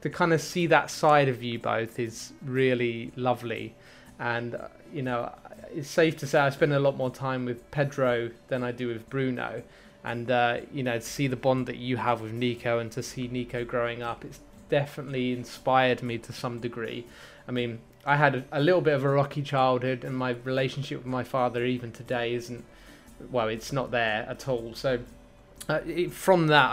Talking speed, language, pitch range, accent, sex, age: 200 wpm, English, 120-140 Hz, British, male, 20-39